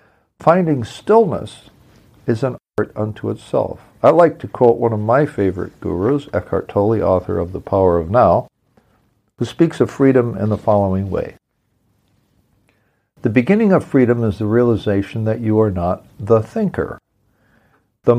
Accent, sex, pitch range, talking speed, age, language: American, male, 100-120 Hz, 150 wpm, 60-79, English